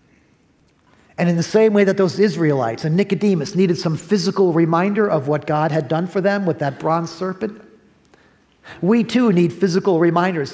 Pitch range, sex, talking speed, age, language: 155-195 Hz, male, 170 wpm, 50-69, English